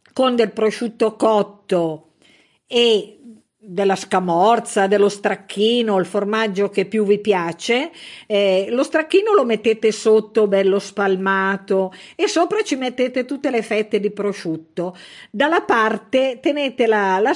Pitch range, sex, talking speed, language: 195-255 Hz, female, 130 wpm, Italian